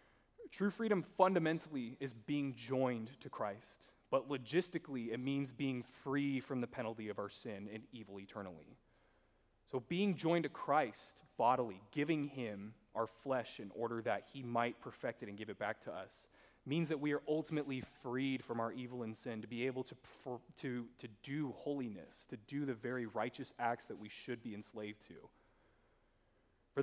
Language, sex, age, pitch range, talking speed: English, male, 20-39, 110-140 Hz, 175 wpm